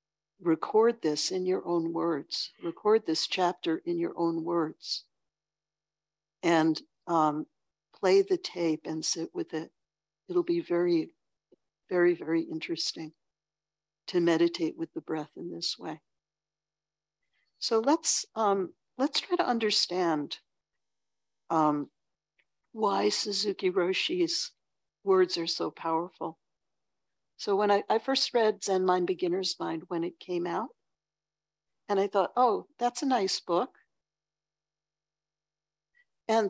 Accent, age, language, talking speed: American, 60-79, English, 120 wpm